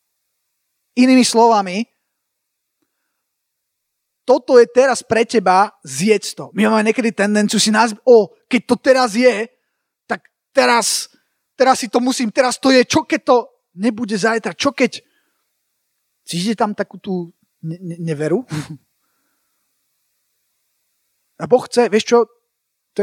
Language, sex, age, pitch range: Slovak, male, 30-49, 190-240 Hz